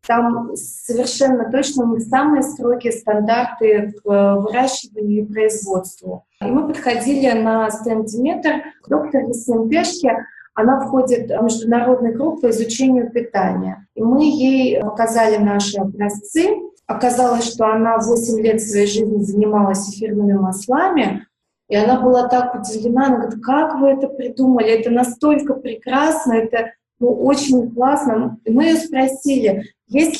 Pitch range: 215-265 Hz